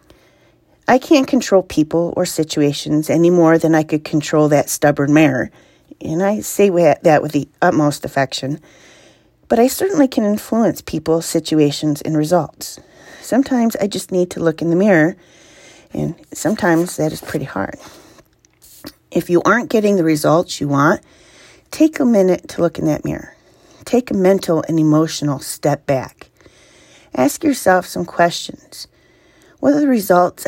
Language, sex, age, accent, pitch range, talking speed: English, female, 40-59, American, 155-200 Hz, 155 wpm